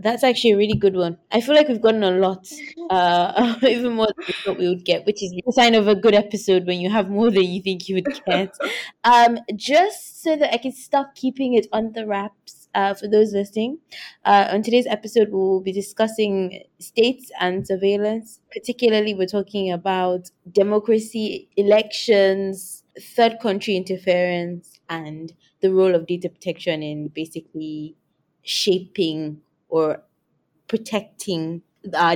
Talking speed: 160 wpm